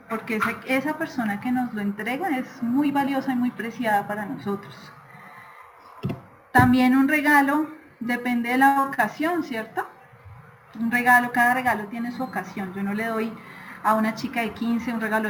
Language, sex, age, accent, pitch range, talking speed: Spanish, female, 30-49, Colombian, 205-260 Hz, 160 wpm